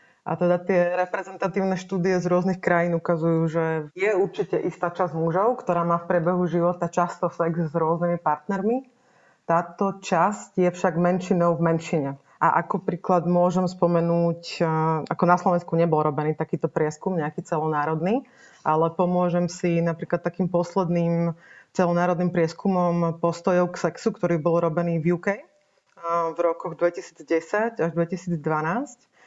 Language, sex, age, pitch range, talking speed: Slovak, female, 30-49, 165-185 Hz, 135 wpm